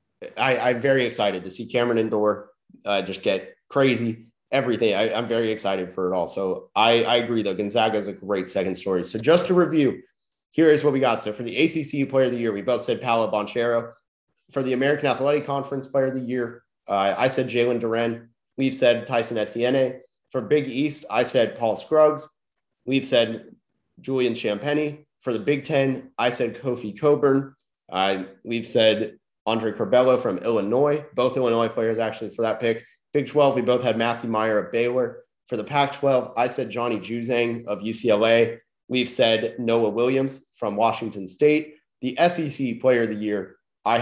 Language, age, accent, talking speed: English, 30-49, American, 185 wpm